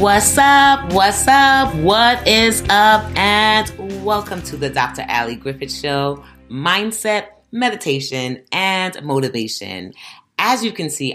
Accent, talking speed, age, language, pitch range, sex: American, 125 wpm, 30-49, English, 110-145 Hz, female